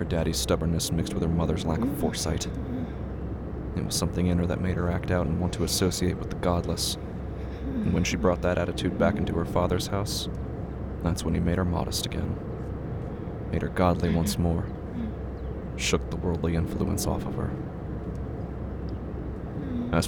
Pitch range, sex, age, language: 85-95 Hz, male, 20-39, English